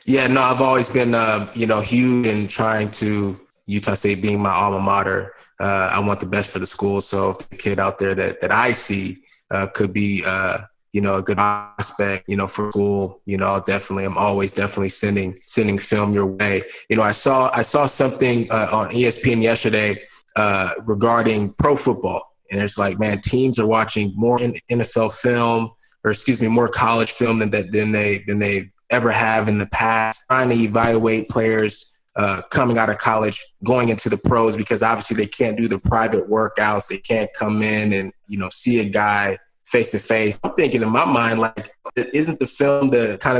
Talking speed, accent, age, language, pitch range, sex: 205 wpm, American, 20-39, English, 100-120 Hz, male